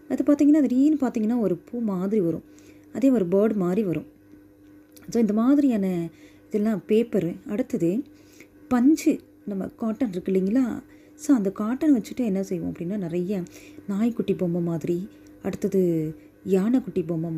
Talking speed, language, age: 130 wpm, Tamil, 30-49